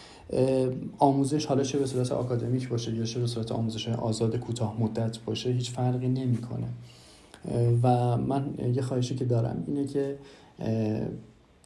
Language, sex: Persian, male